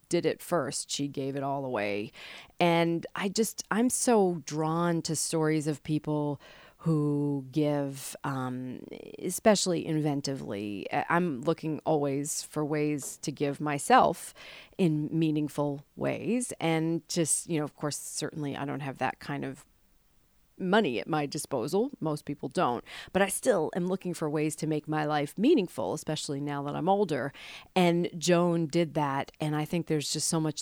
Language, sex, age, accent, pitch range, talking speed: English, female, 40-59, American, 150-175 Hz, 160 wpm